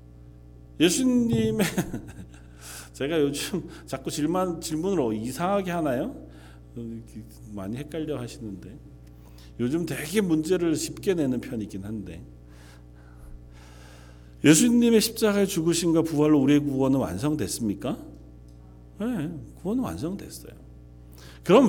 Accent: native